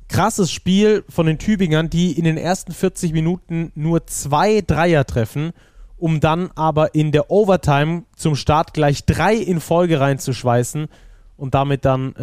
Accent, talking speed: German, 150 wpm